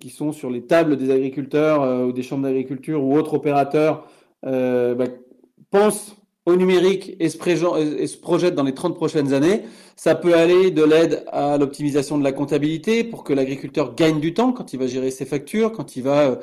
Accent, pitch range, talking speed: French, 150-190 Hz, 190 wpm